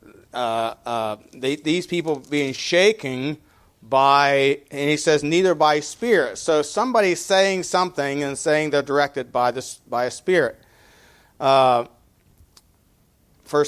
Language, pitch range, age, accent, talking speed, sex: English, 145-185 Hz, 40-59, American, 125 wpm, male